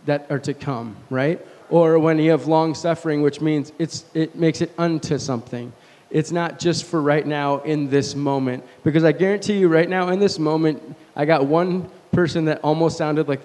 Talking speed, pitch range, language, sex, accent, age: 200 wpm, 140-170 Hz, English, male, American, 20-39